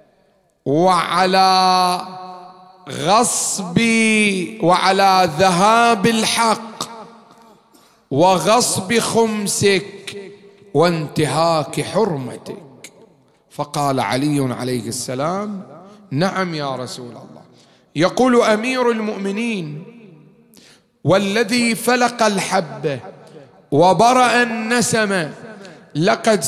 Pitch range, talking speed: 160-220 Hz, 60 wpm